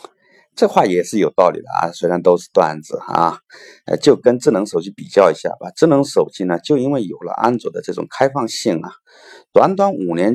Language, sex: Chinese, male